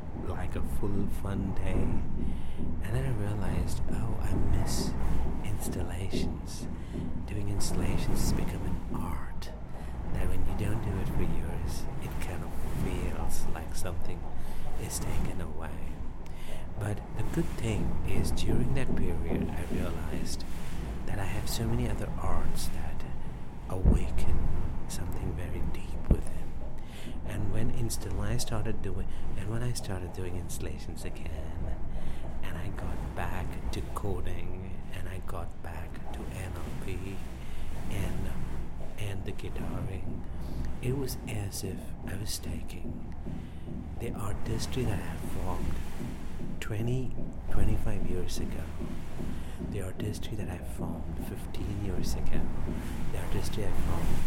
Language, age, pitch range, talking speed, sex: English, 60-79, 80-100 Hz, 130 wpm, male